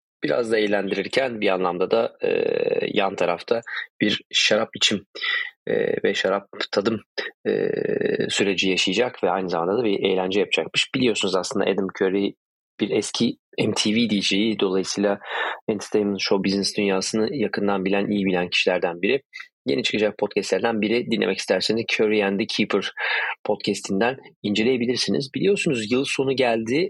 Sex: male